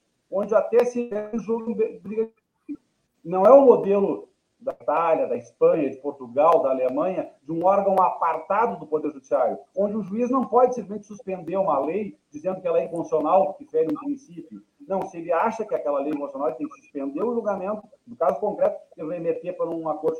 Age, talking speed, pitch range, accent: 40-59, 195 wpm, 160-235 Hz, Brazilian